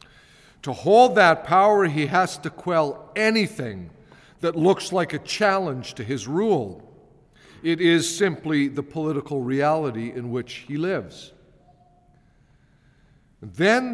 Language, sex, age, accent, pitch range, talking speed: English, male, 50-69, American, 135-195 Hz, 120 wpm